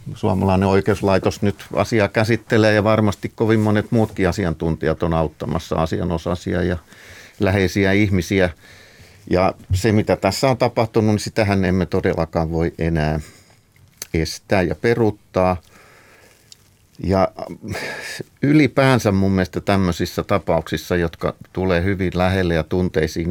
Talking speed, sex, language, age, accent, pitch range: 115 wpm, male, Finnish, 50-69, native, 85-105 Hz